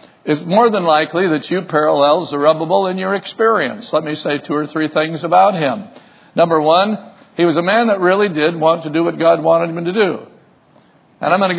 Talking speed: 215 wpm